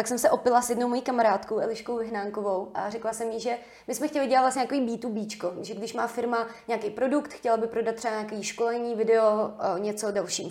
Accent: native